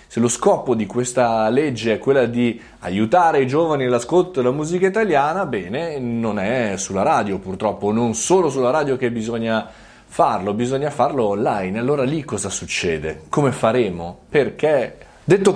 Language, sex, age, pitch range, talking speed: Italian, male, 20-39, 100-145 Hz, 155 wpm